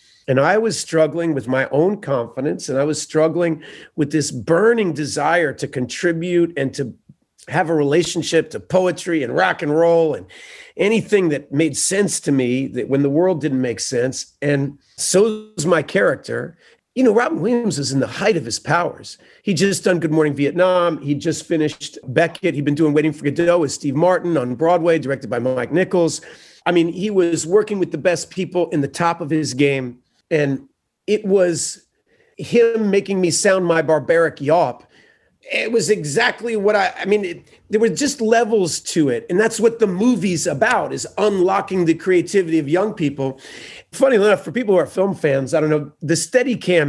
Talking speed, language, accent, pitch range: 190 wpm, English, American, 150-200 Hz